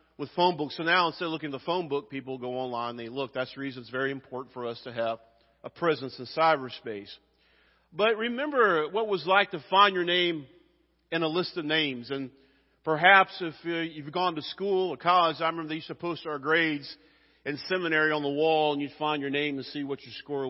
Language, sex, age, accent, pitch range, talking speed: English, male, 40-59, American, 150-195 Hz, 230 wpm